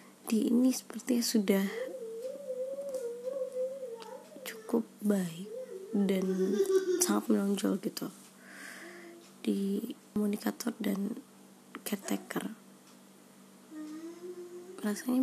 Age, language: 20-39, Indonesian